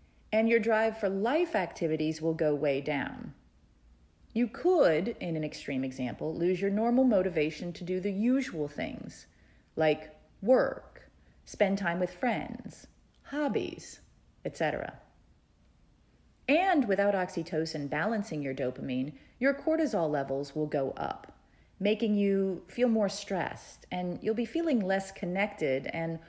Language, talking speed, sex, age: English, 130 wpm, female, 40-59